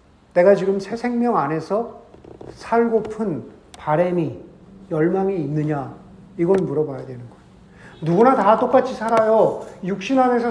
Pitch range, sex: 175-235 Hz, male